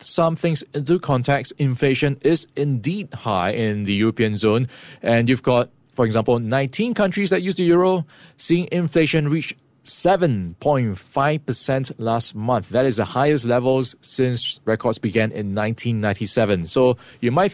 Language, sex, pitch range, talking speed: English, male, 115-155 Hz, 145 wpm